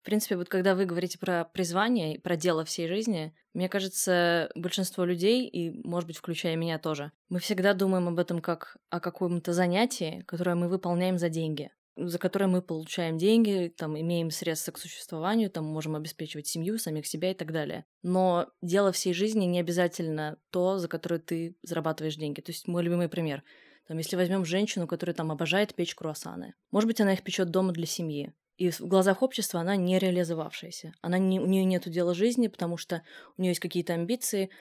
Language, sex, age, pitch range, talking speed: Russian, female, 20-39, 165-190 Hz, 190 wpm